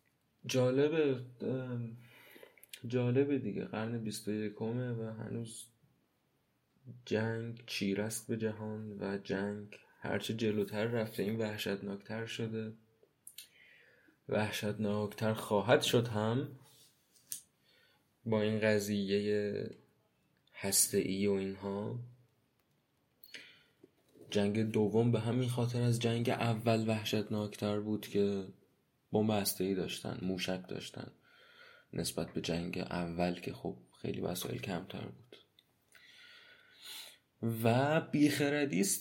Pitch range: 105-125 Hz